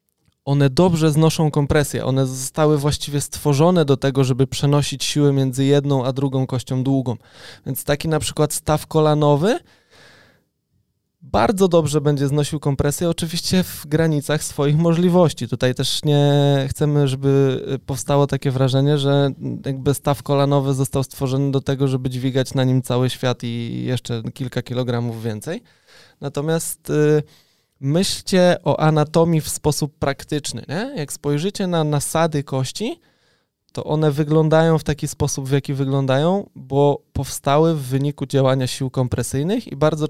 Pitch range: 135-155 Hz